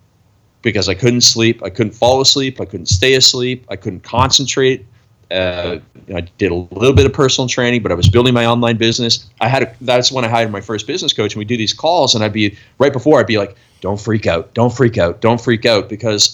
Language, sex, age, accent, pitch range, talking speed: English, male, 30-49, American, 100-120 Hz, 240 wpm